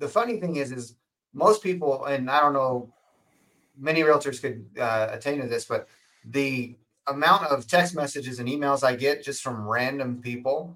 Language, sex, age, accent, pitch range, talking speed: English, male, 30-49, American, 120-140 Hz, 180 wpm